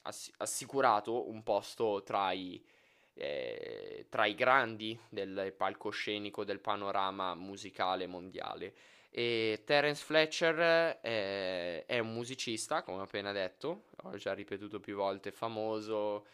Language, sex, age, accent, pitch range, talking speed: Italian, male, 20-39, native, 105-125 Hz, 120 wpm